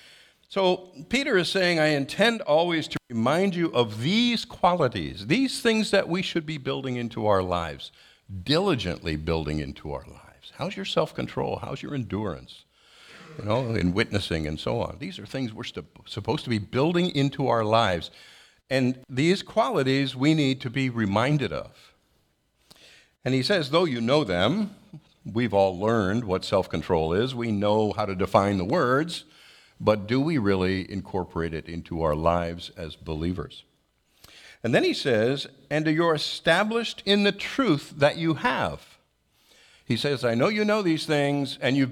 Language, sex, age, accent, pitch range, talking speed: English, male, 50-69, American, 110-170 Hz, 165 wpm